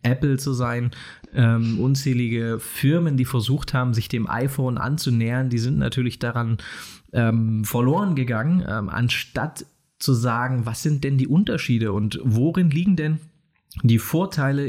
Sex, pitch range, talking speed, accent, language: male, 120-140 Hz, 145 wpm, German, German